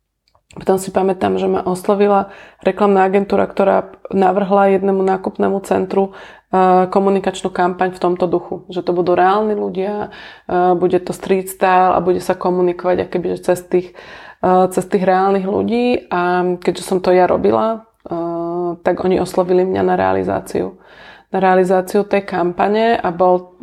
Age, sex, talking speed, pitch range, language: 20-39, female, 135 wpm, 175-190 Hz, Slovak